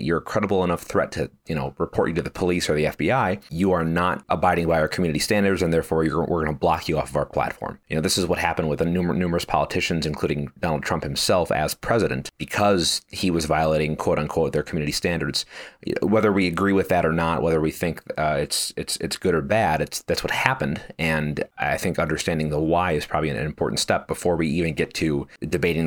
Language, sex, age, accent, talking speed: English, male, 30-49, American, 230 wpm